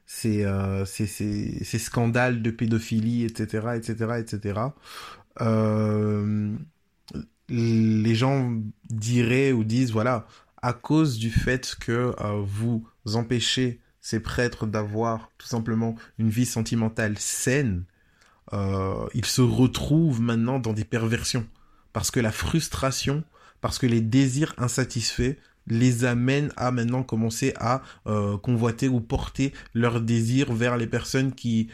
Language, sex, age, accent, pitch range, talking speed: French, male, 20-39, French, 110-125 Hz, 125 wpm